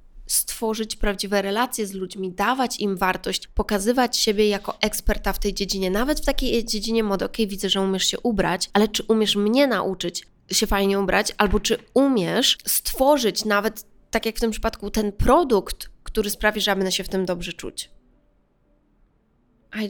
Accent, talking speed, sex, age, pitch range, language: native, 170 wpm, female, 20-39, 195-220 Hz, Polish